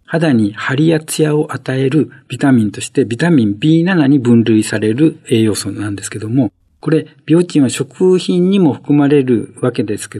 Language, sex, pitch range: Japanese, male, 115-160 Hz